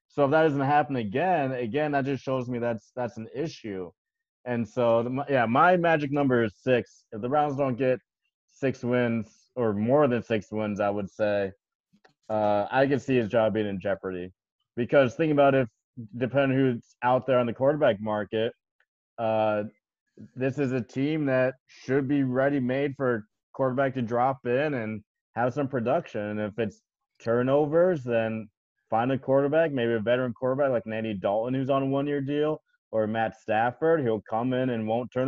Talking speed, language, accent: 180 wpm, English, American